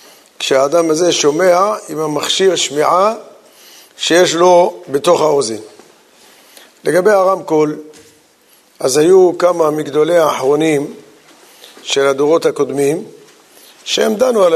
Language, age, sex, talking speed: Hebrew, 50-69, male, 95 wpm